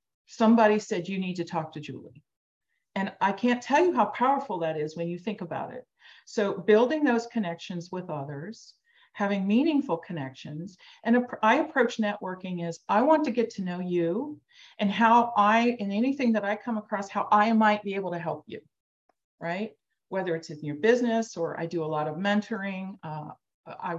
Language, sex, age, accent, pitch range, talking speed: English, female, 40-59, American, 170-215 Hz, 190 wpm